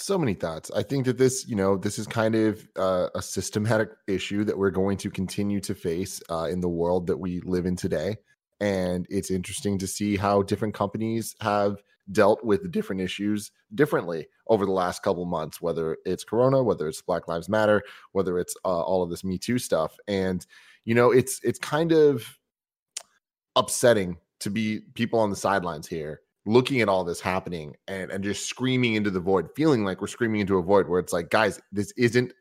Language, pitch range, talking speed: English, 100-125 Hz, 205 wpm